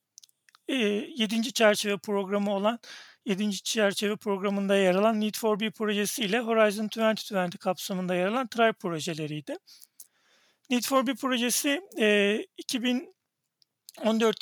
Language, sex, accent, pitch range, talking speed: Turkish, male, native, 200-230 Hz, 110 wpm